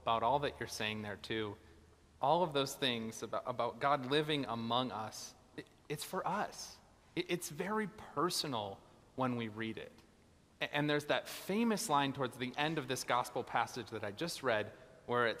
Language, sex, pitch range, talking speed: English, male, 130-190 Hz, 180 wpm